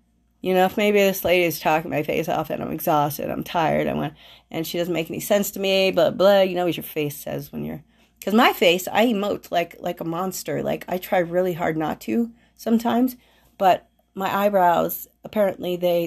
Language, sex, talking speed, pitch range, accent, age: English, female, 215 wpm, 180-225 Hz, American, 40-59